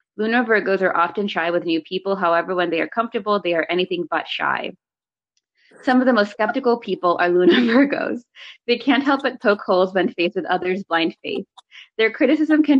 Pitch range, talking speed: 175-240 Hz, 195 wpm